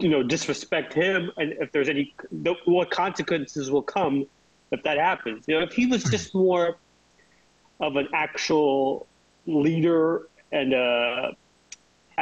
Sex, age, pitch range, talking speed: male, 30-49, 130-165 Hz, 145 wpm